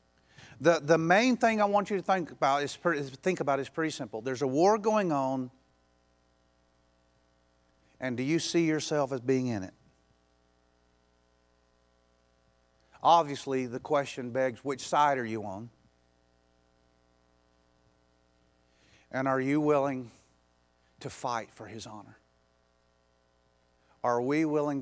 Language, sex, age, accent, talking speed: English, male, 50-69, American, 125 wpm